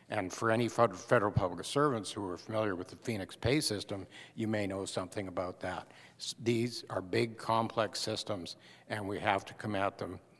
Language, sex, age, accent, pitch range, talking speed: English, male, 60-79, American, 95-115 Hz, 185 wpm